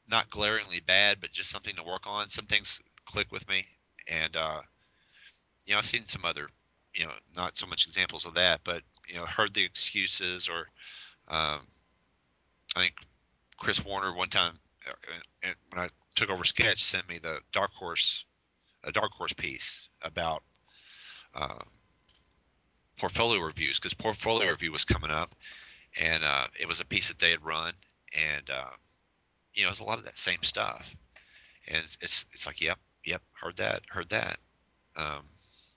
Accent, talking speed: American, 170 wpm